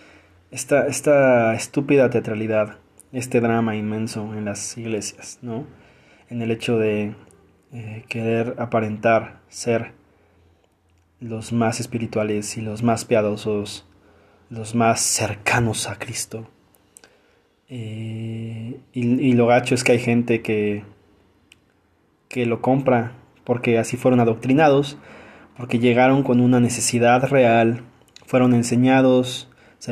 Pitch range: 110-130 Hz